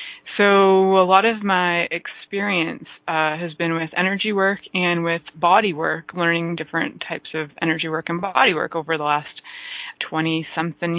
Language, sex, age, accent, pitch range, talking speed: English, female, 20-39, American, 165-200 Hz, 160 wpm